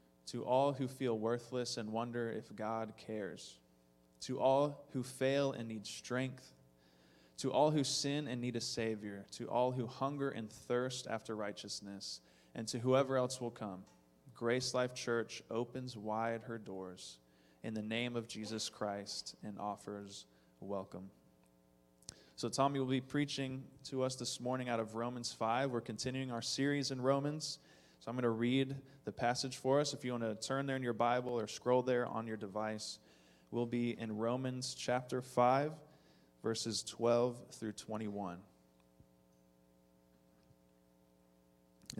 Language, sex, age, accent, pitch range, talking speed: English, male, 20-39, American, 100-130 Hz, 155 wpm